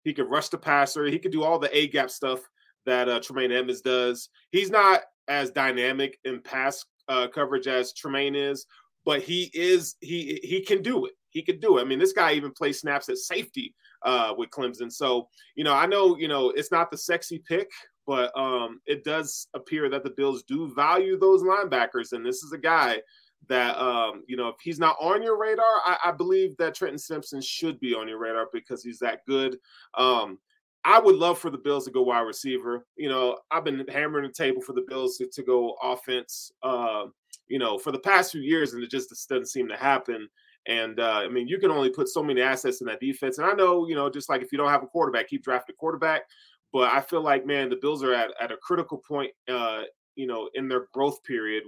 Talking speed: 230 wpm